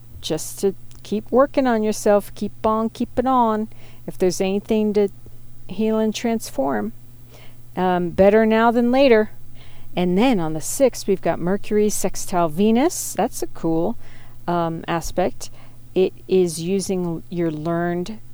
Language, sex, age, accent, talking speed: English, female, 50-69, American, 135 wpm